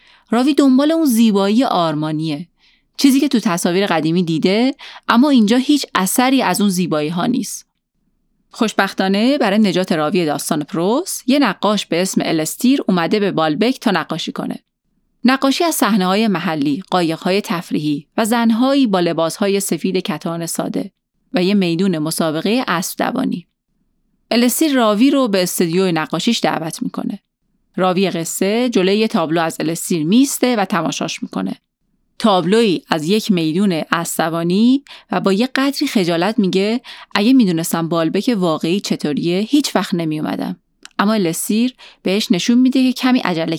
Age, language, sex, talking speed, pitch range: 30-49, Persian, female, 150 wpm, 180-245 Hz